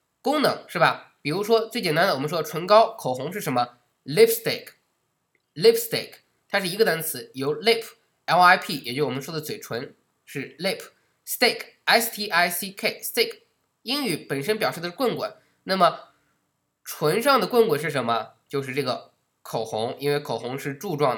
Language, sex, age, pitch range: Chinese, male, 20-39, 140-215 Hz